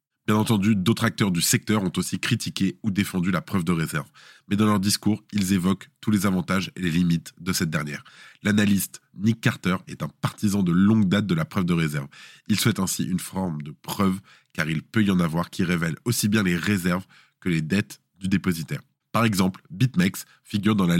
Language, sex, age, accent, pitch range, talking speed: French, male, 20-39, French, 90-115 Hz, 210 wpm